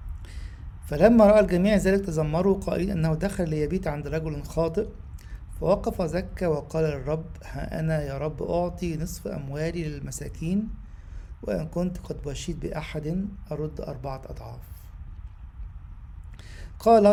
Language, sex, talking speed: English, male, 115 wpm